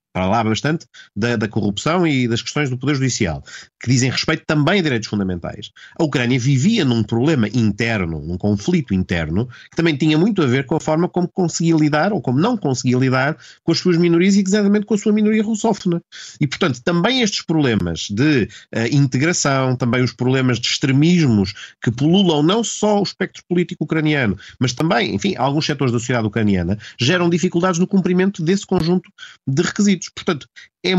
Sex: male